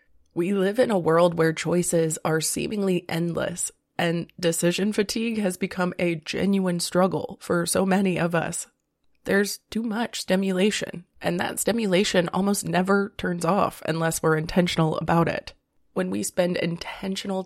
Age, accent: 20-39, American